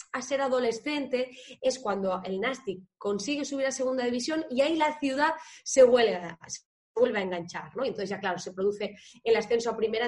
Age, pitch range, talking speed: 20-39, 205-260 Hz, 195 wpm